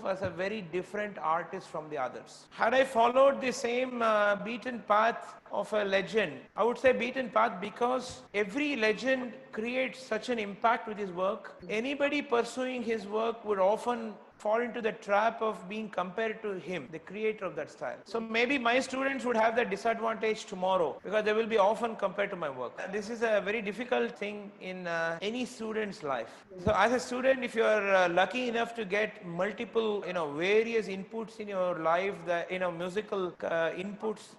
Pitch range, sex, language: 190-235 Hz, male, English